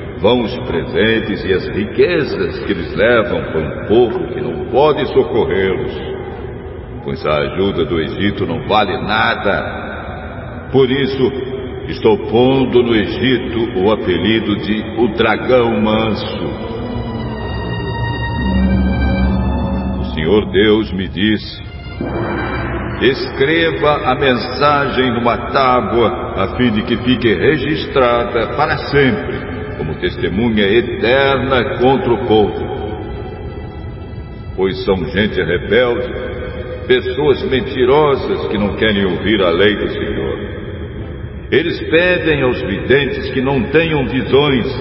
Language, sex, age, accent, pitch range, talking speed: Portuguese, male, 60-79, Brazilian, 105-155 Hz, 110 wpm